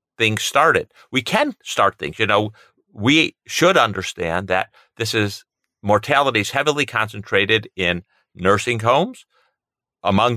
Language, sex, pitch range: English, male, 95-125 Hz